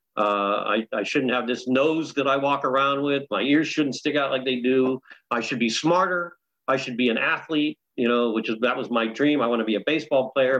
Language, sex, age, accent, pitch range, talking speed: English, male, 50-69, American, 110-135 Hz, 250 wpm